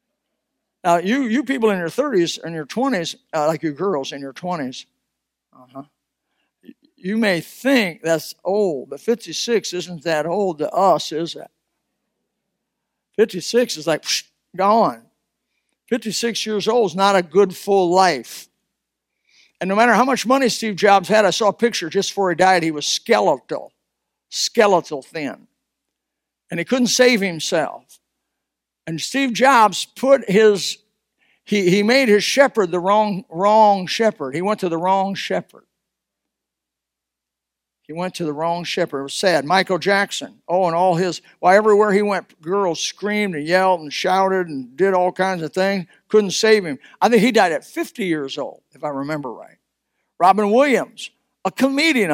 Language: English